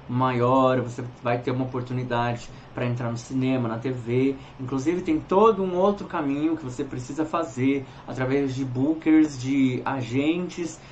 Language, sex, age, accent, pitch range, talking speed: Portuguese, male, 20-39, Brazilian, 130-155 Hz, 150 wpm